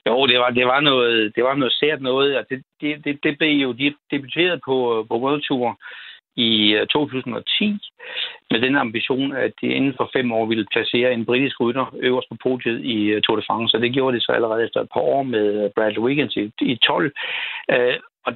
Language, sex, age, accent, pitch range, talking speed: Danish, male, 60-79, native, 120-155 Hz, 205 wpm